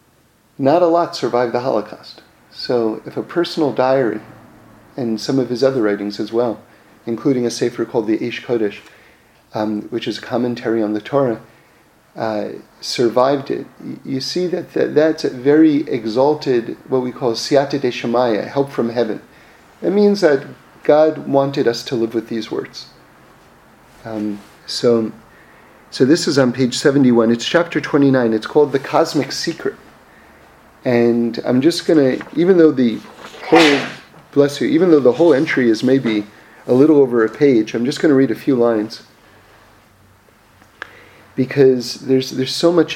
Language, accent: English, American